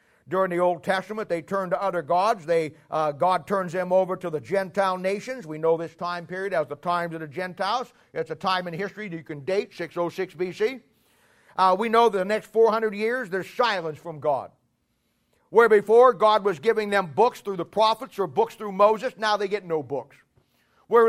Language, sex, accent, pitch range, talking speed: English, male, American, 185-245 Hz, 210 wpm